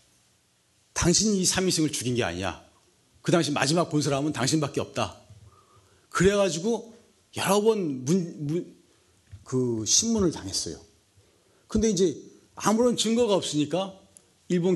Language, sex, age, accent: Korean, male, 40-59, native